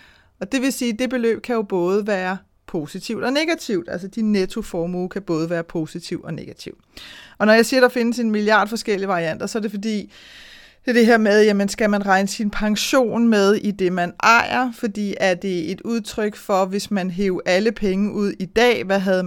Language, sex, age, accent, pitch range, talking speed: Danish, female, 30-49, native, 185-225 Hz, 220 wpm